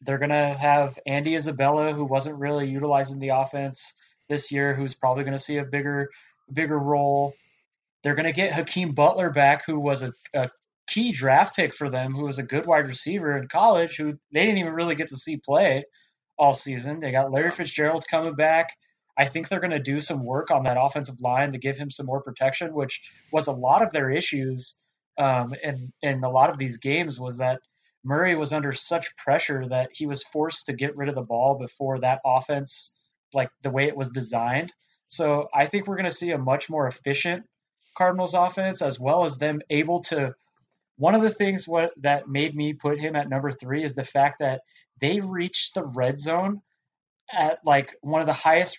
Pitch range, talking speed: 135-165 Hz, 210 wpm